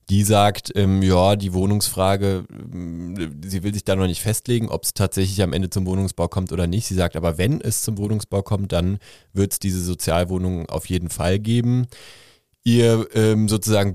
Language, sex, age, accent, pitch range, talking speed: German, male, 20-39, German, 90-100 Hz, 185 wpm